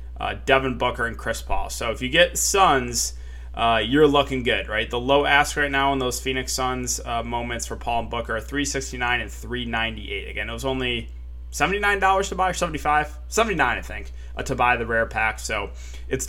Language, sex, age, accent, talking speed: English, male, 20-39, American, 205 wpm